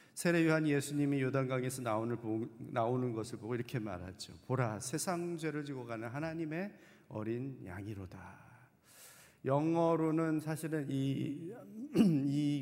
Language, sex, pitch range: Korean, male, 115-155 Hz